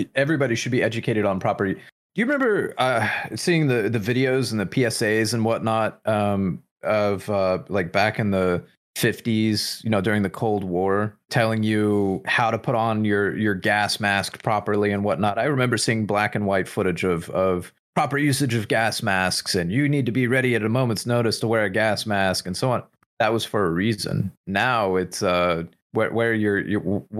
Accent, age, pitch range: American, 30-49, 100-120 Hz